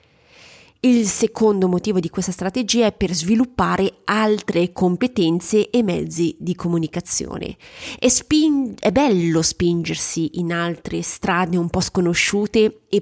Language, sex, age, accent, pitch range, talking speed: Italian, female, 30-49, native, 170-210 Hz, 115 wpm